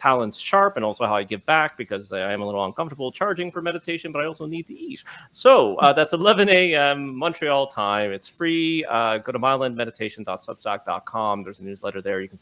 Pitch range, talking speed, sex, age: 115-155 Hz, 205 wpm, male, 30-49